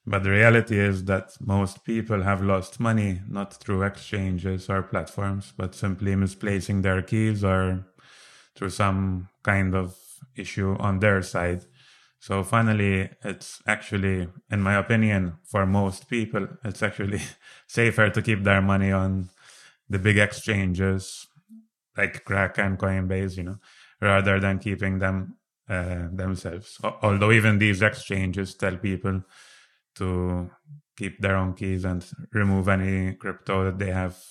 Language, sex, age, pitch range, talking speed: English, male, 20-39, 95-105 Hz, 140 wpm